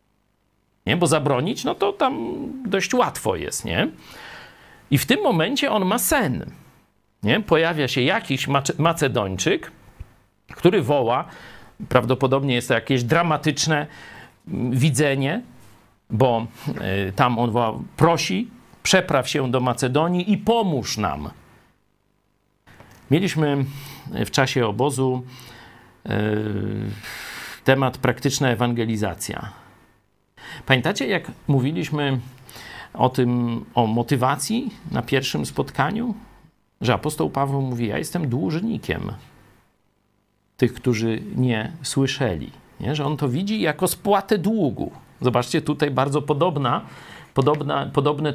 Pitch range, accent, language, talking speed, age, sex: 120-155 Hz, native, Polish, 100 wpm, 50-69, male